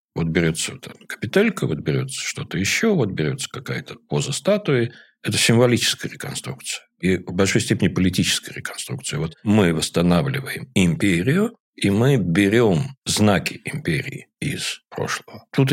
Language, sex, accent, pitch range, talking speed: Russian, male, native, 85-135 Hz, 125 wpm